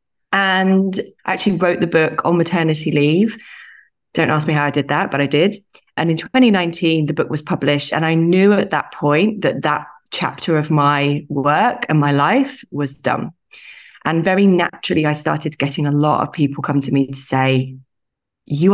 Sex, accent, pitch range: female, British, 145-180 Hz